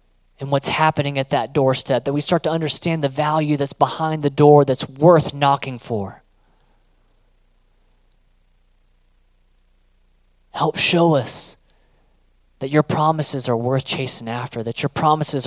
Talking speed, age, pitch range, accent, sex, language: 130 wpm, 30-49, 90-135 Hz, American, male, English